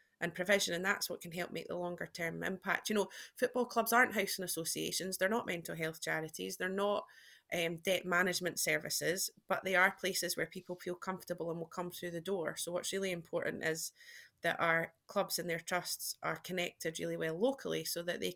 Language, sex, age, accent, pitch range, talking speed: English, female, 20-39, British, 175-200 Hz, 205 wpm